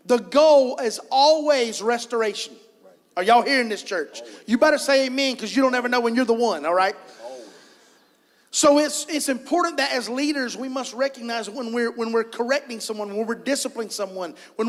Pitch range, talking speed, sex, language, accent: 225-275 Hz, 190 wpm, male, English, American